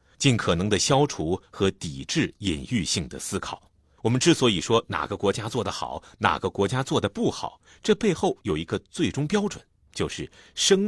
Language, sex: Chinese, male